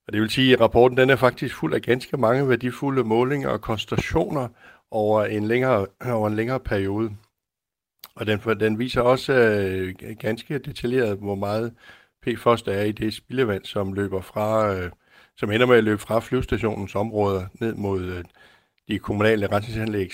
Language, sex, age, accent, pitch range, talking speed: Danish, male, 60-79, native, 100-120 Hz, 165 wpm